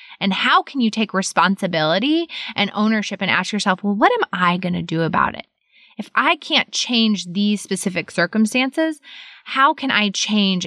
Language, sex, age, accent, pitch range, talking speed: English, female, 20-39, American, 170-215 Hz, 175 wpm